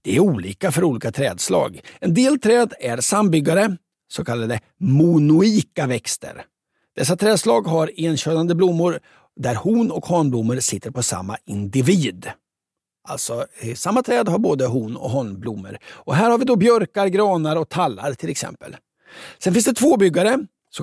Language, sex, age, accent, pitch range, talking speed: English, male, 60-79, Swedish, 130-195 Hz, 155 wpm